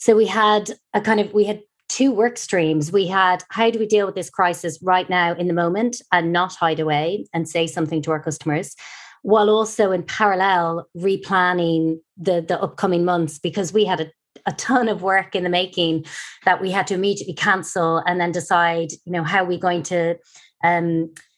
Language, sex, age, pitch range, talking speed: English, female, 30-49, 165-200 Hz, 200 wpm